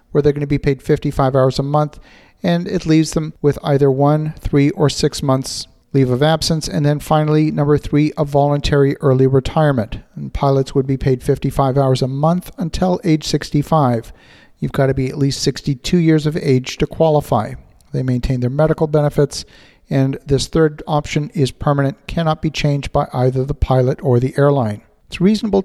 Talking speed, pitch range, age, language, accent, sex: 185 wpm, 135-160 Hz, 50-69, English, American, male